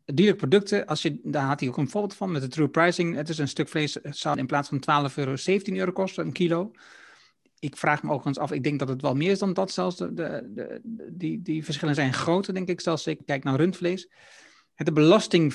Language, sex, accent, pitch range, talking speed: Dutch, male, Dutch, 145-180 Hz, 255 wpm